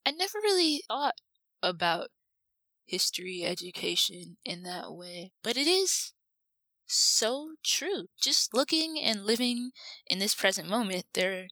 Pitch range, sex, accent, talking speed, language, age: 180-230 Hz, female, American, 125 wpm, English, 20-39